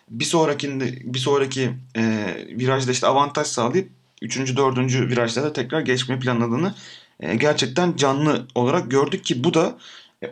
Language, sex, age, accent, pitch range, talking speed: Turkish, male, 30-49, native, 115-150 Hz, 140 wpm